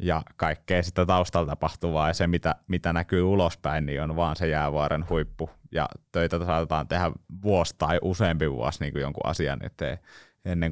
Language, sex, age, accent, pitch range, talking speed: Finnish, male, 20-39, native, 80-110 Hz, 175 wpm